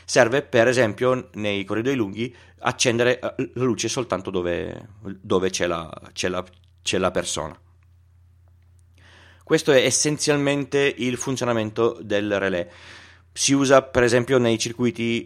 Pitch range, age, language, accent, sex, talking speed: 95-120 Hz, 30-49, Italian, native, male, 125 wpm